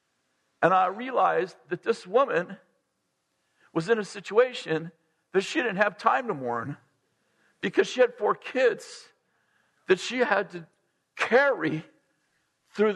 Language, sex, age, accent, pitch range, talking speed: English, male, 50-69, American, 145-215 Hz, 130 wpm